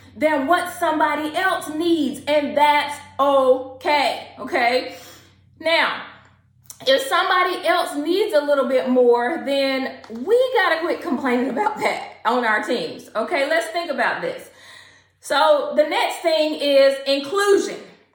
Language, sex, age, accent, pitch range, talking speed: English, female, 30-49, American, 275-345 Hz, 130 wpm